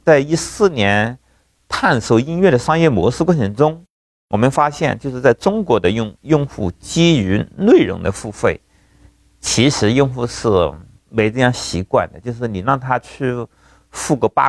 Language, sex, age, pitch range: Chinese, male, 50-69, 95-135 Hz